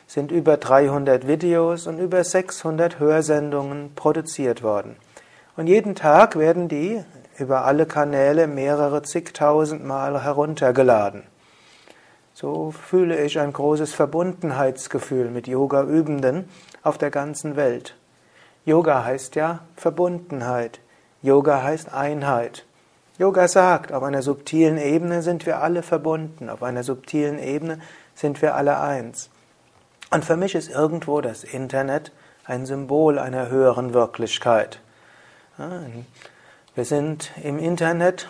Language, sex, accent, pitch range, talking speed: German, male, German, 140-170 Hz, 115 wpm